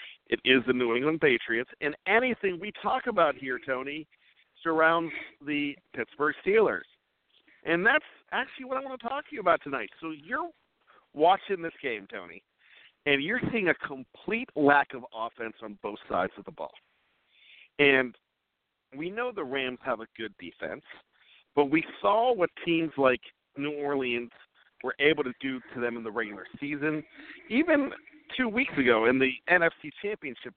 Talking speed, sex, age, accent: 165 wpm, male, 50-69, American